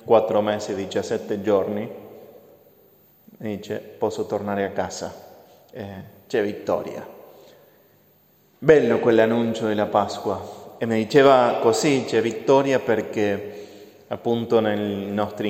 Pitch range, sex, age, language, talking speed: 105-125 Hz, male, 30-49, Italian, 105 wpm